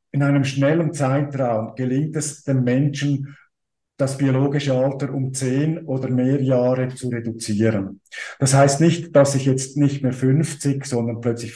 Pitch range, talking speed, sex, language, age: 130-145 Hz, 150 wpm, male, German, 50-69